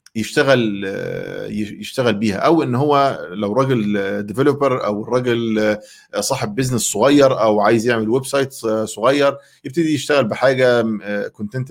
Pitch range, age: 110-145 Hz, 50-69